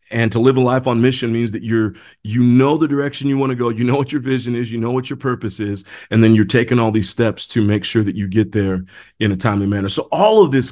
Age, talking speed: 40-59, 290 wpm